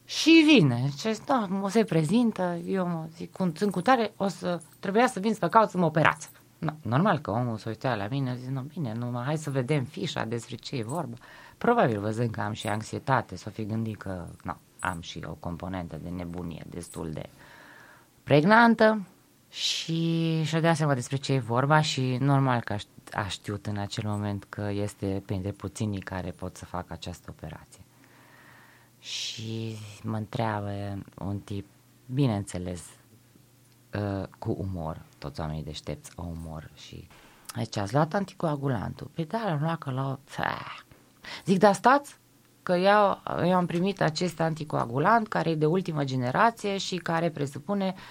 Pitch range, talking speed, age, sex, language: 105-170 Hz, 165 wpm, 20-39, female, Romanian